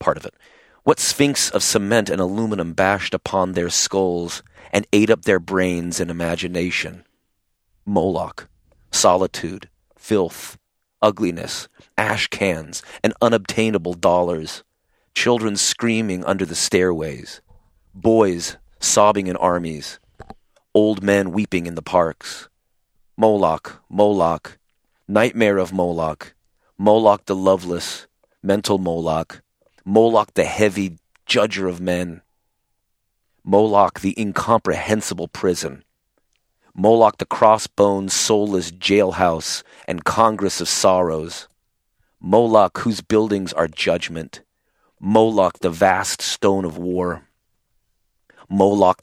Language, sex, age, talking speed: English, male, 30-49, 105 wpm